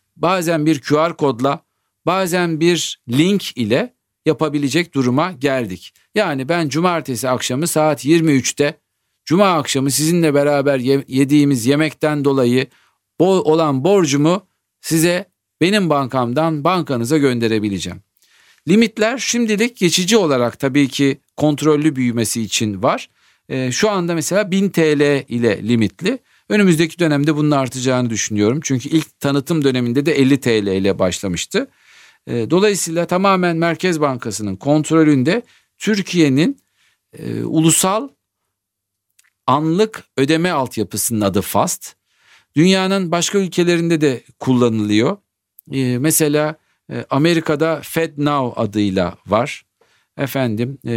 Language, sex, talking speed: Turkish, male, 100 wpm